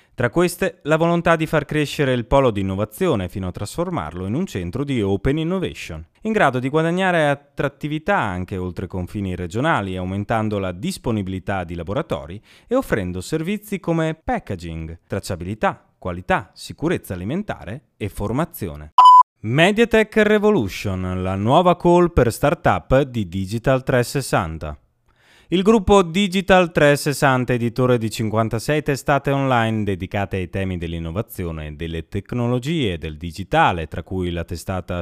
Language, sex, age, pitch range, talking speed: Italian, male, 30-49, 95-160 Hz, 130 wpm